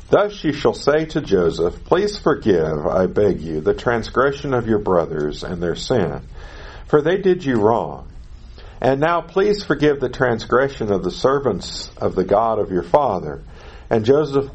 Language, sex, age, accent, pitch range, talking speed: English, male, 50-69, American, 80-135 Hz, 170 wpm